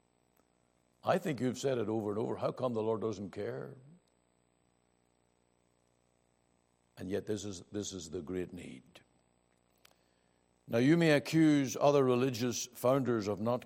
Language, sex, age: English, male, 60-79